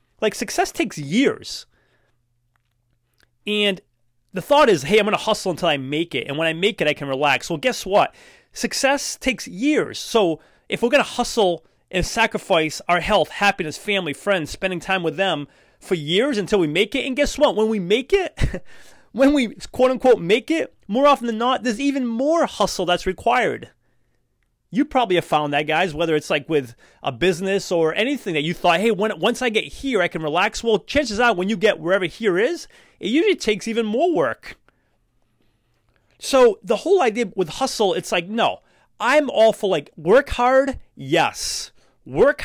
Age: 30-49